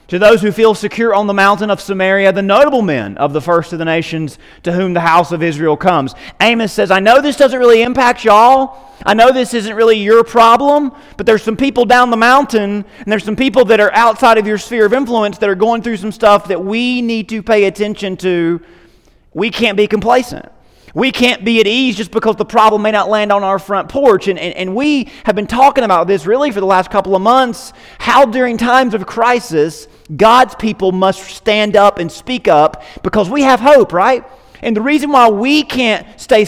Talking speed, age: 220 wpm, 30-49